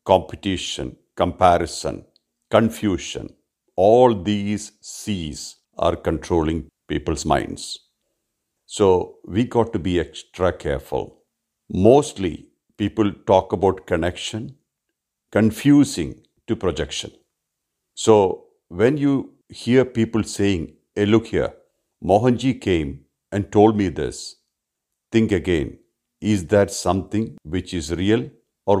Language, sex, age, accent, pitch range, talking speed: English, male, 50-69, Indian, 85-110 Hz, 100 wpm